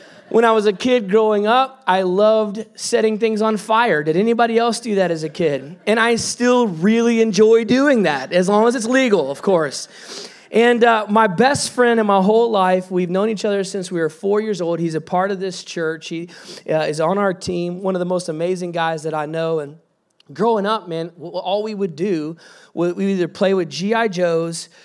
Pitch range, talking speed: 180-225 Hz, 215 wpm